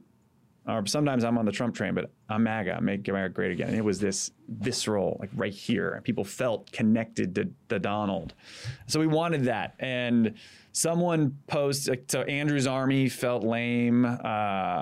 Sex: male